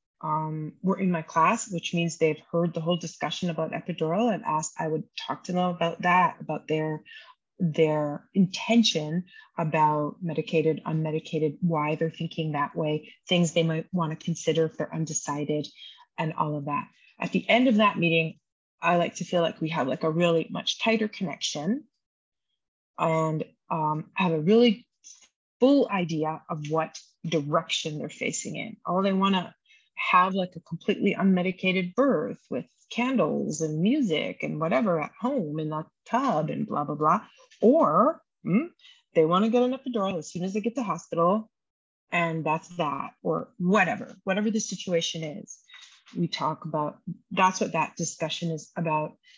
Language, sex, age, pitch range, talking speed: English, female, 30-49, 160-195 Hz, 170 wpm